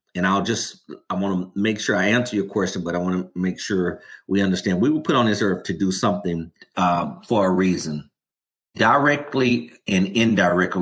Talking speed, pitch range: 200 wpm, 95-120 Hz